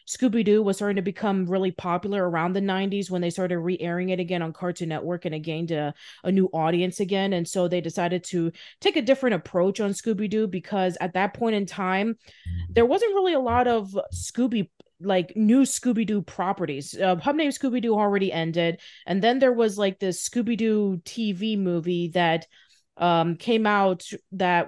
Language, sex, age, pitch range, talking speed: English, female, 30-49, 170-215 Hz, 200 wpm